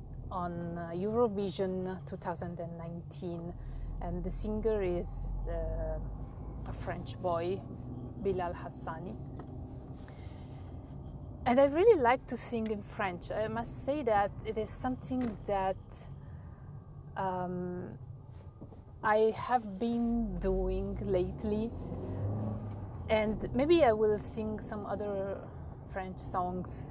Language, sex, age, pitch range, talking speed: English, female, 30-49, 170-210 Hz, 100 wpm